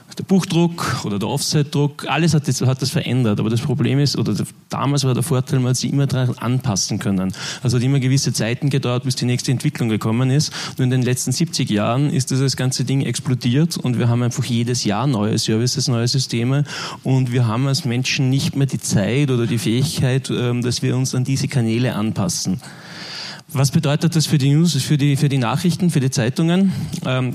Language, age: German, 30-49